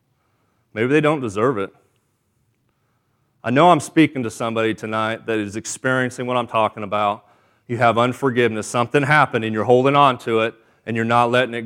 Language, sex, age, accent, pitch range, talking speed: English, male, 30-49, American, 110-140 Hz, 180 wpm